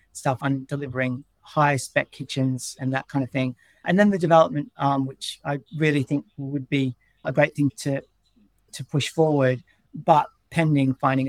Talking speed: 170 wpm